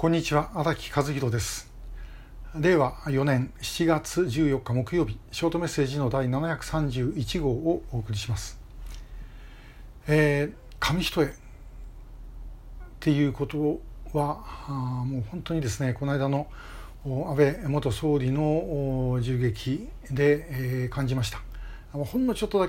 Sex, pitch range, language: male, 125-160 Hz, Japanese